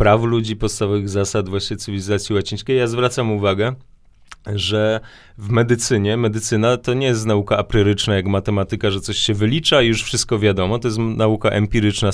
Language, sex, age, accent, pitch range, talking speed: Polish, male, 30-49, native, 105-130 Hz, 165 wpm